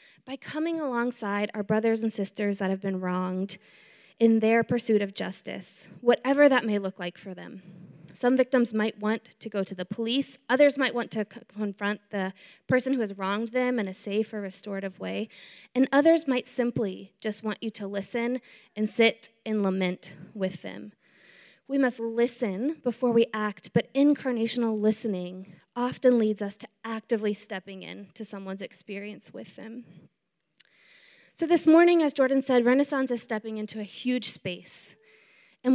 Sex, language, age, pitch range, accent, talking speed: female, English, 20-39, 195-245 Hz, American, 165 wpm